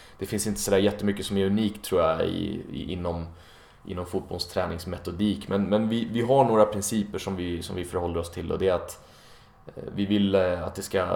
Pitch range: 90-105 Hz